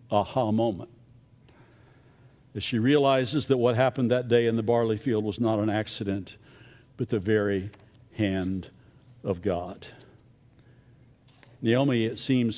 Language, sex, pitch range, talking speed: English, male, 115-160 Hz, 130 wpm